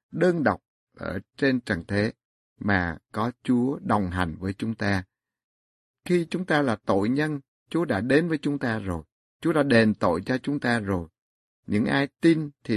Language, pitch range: Vietnamese, 105-145 Hz